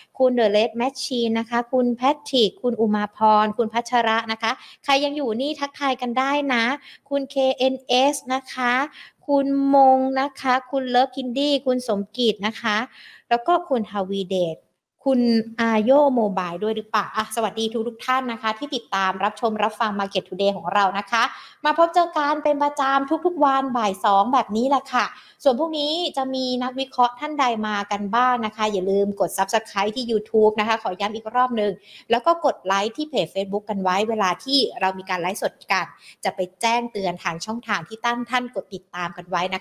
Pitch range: 205-265 Hz